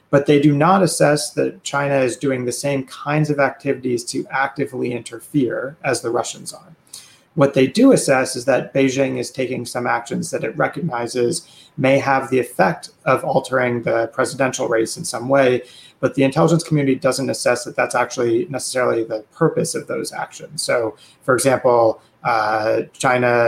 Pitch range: 120-140 Hz